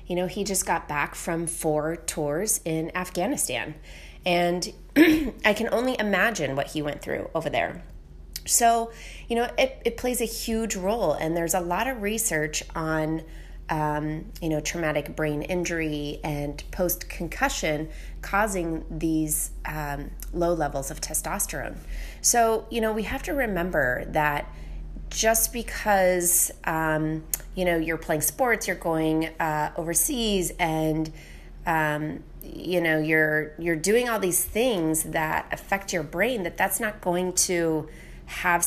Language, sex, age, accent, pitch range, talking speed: English, female, 30-49, American, 155-210 Hz, 145 wpm